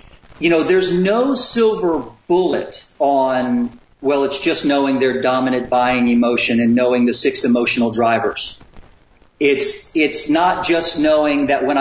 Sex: male